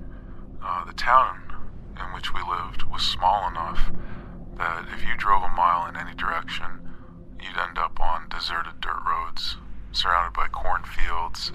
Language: English